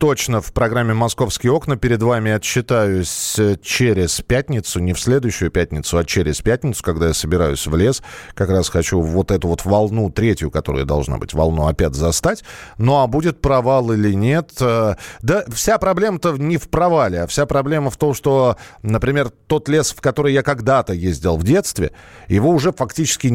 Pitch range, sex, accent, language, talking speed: 105-155 Hz, male, native, Russian, 175 wpm